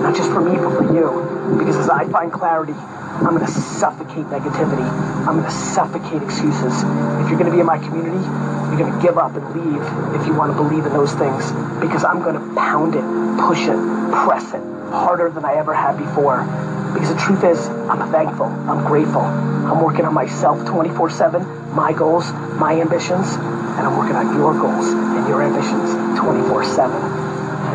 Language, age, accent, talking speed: English, 30-49, American, 190 wpm